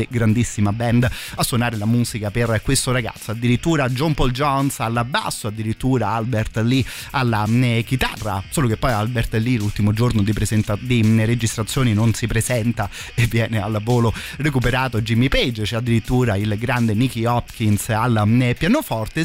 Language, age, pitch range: Italian, 30-49, 110-130 Hz